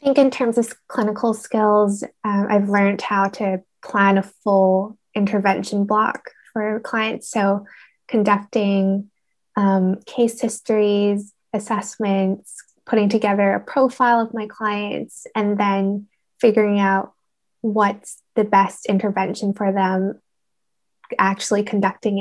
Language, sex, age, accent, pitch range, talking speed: English, female, 10-29, American, 195-220 Hz, 120 wpm